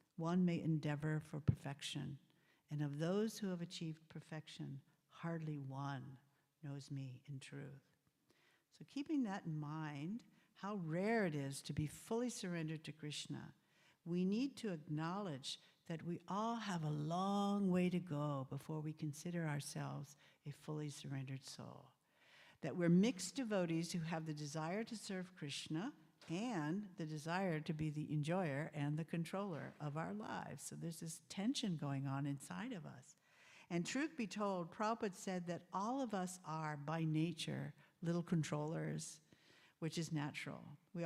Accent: American